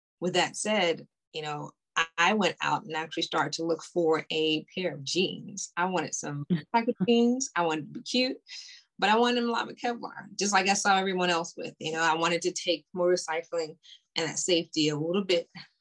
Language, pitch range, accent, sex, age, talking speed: English, 165-225 Hz, American, female, 20-39, 215 wpm